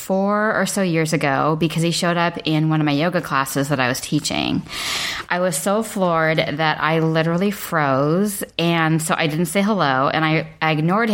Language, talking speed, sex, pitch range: English, 200 wpm, female, 150-175 Hz